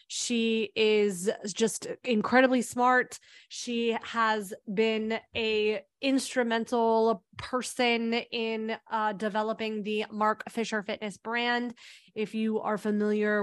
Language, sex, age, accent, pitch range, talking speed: English, female, 20-39, American, 205-230 Hz, 105 wpm